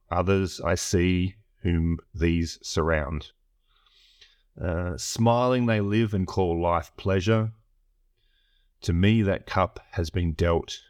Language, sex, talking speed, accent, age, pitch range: English, male, 115 wpm, Australian, 30-49, 85-105 Hz